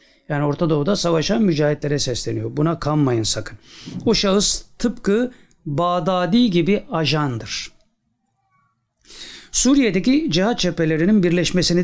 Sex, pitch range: male, 150-210 Hz